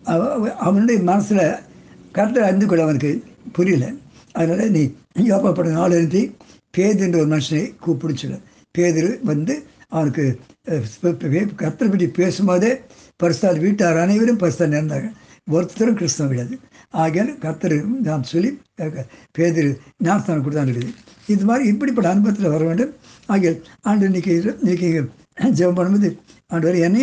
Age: 60-79